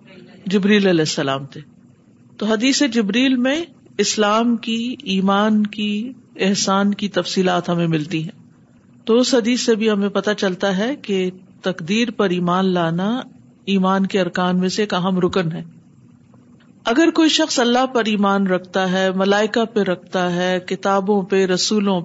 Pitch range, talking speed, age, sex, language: 190-235 Hz, 150 wpm, 50-69, female, Urdu